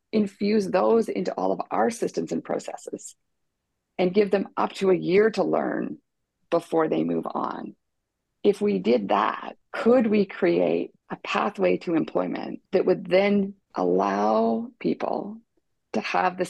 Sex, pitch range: female, 180-215 Hz